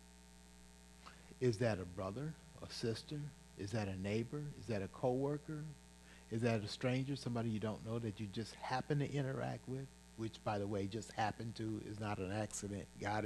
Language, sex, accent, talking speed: English, male, American, 185 wpm